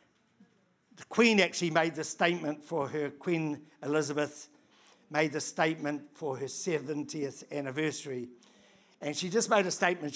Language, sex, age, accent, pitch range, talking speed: English, male, 60-79, British, 150-185 Hz, 135 wpm